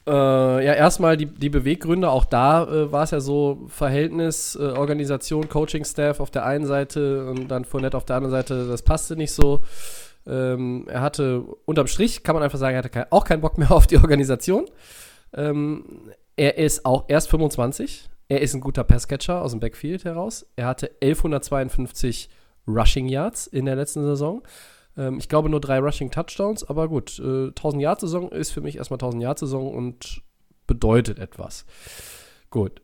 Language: German